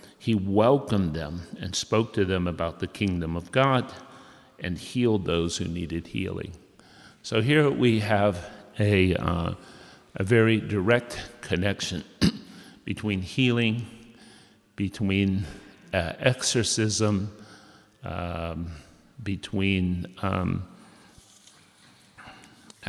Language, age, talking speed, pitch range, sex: English, 50-69, 95 wpm, 90-110 Hz, male